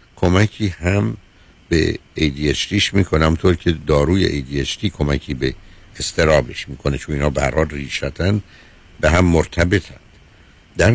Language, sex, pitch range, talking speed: Persian, male, 80-100 Hz, 125 wpm